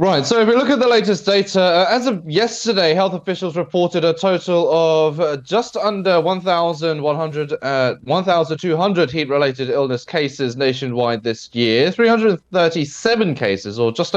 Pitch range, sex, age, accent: 125-180 Hz, male, 20-39, British